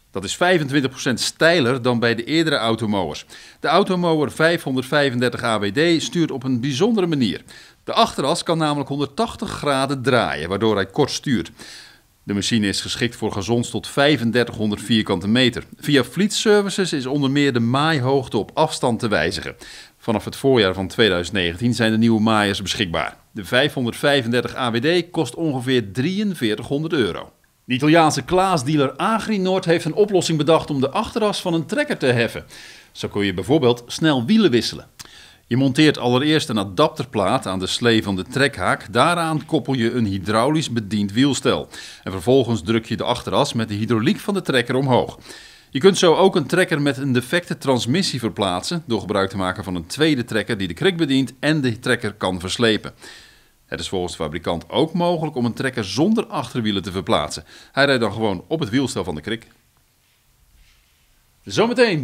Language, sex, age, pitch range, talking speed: Dutch, male, 40-59, 110-160 Hz, 170 wpm